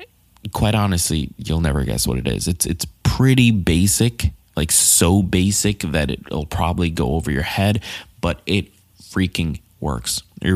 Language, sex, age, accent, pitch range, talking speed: English, male, 20-39, American, 85-100 Hz, 160 wpm